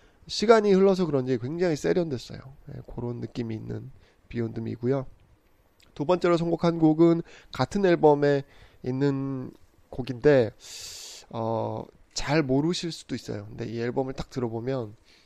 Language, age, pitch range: Korean, 20-39, 115-155 Hz